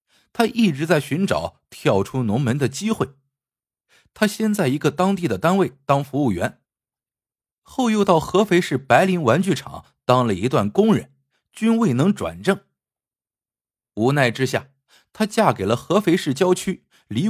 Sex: male